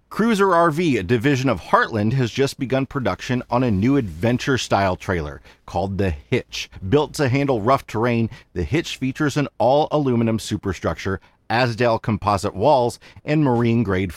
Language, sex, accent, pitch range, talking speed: English, male, American, 100-140 Hz, 150 wpm